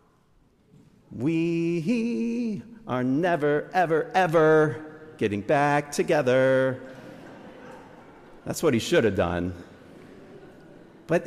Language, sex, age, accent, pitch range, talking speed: English, male, 40-59, American, 110-155 Hz, 80 wpm